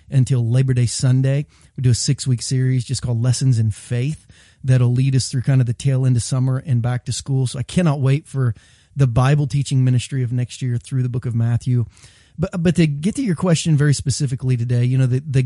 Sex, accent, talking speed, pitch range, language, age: male, American, 235 wpm, 120-145 Hz, English, 30-49